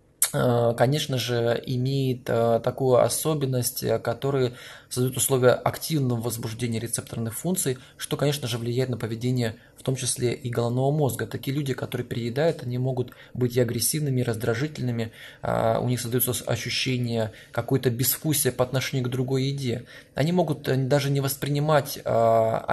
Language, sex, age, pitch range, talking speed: Russian, male, 20-39, 120-135 Hz, 135 wpm